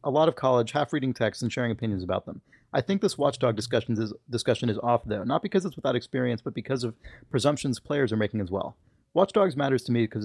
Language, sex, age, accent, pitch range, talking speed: English, male, 30-49, American, 105-130 Hz, 240 wpm